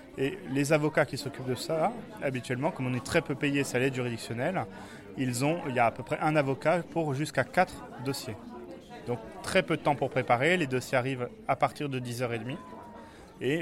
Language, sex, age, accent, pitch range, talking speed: French, male, 20-39, French, 120-145 Hz, 195 wpm